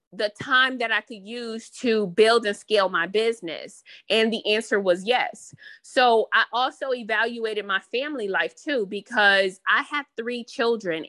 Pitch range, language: 195-245 Hz, English